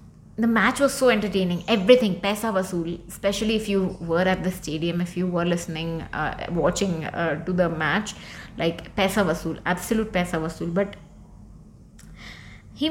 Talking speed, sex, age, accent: 155 wpm, female, 20-39, native